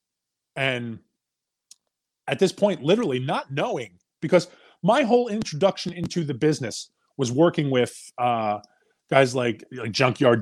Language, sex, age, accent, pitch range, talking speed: English, male, 30-49, American, 130-170 Hz, 125 wpm